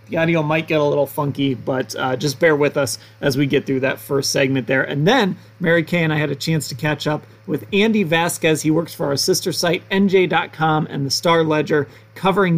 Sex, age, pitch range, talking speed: male, 30-49, 135-170 Hz, 230 wpm